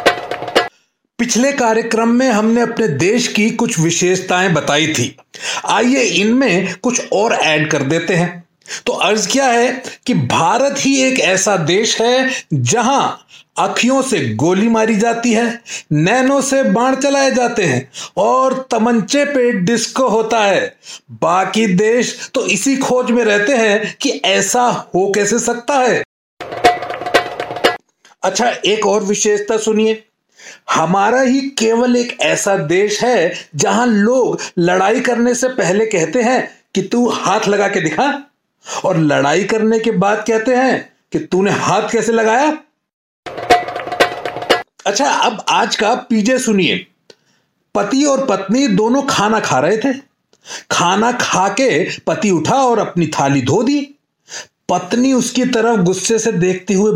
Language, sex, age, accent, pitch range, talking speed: Hindi, male, 40-59, native, 195-250 Hz, 140 wpm